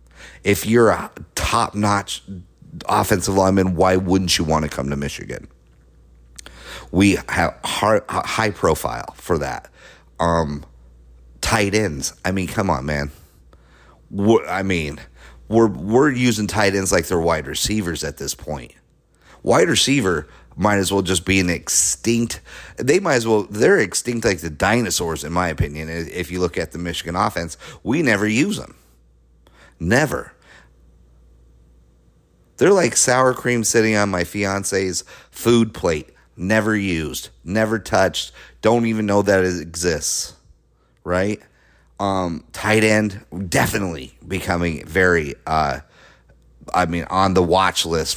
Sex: male